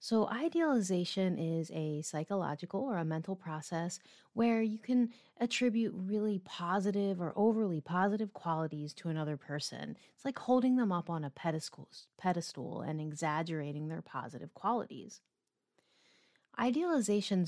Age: 30-49